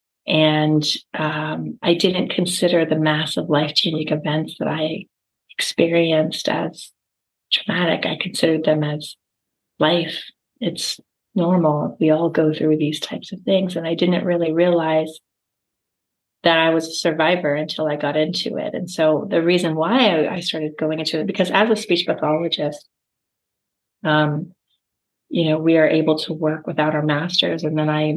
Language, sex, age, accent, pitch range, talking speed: English, female, 30-49, American, 155-175 Hz, 160 wpm